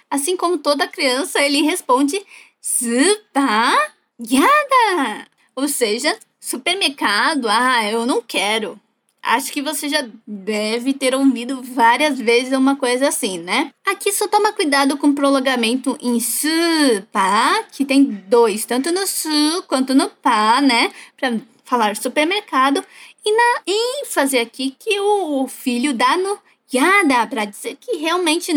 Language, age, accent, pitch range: Japanese, 10-29, Brazilian, 245-340 Hz